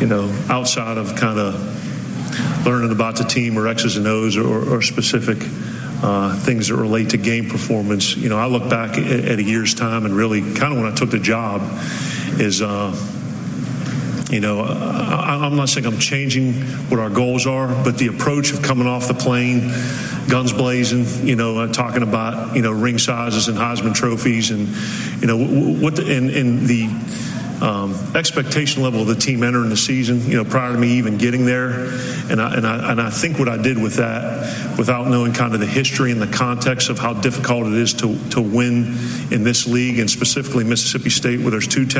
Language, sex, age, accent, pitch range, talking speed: English, male, 40-59, American, 110-125 Hz, 200 wpm